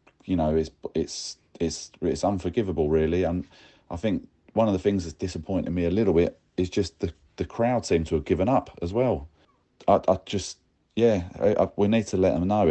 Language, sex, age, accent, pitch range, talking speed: English, male, 30-49, British, 80-95 Hz, 215 wpm